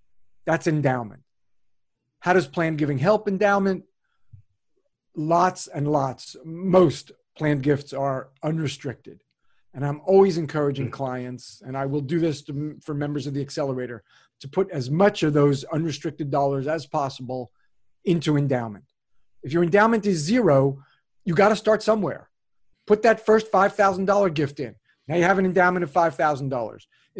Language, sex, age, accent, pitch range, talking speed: English, male, 40-59, American, 140-185 Hz, 145 wpm